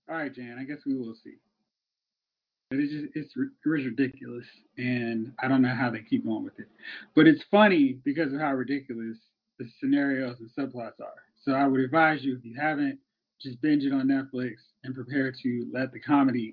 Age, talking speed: 30-49, 200 wpm